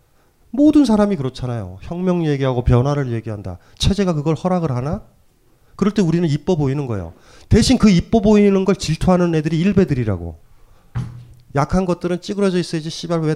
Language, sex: Korean, male